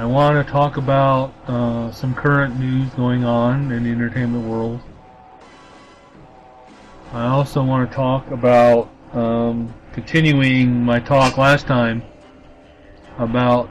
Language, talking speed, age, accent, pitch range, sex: English, 125 wpm, 40-59, American, 115-140 Hz, male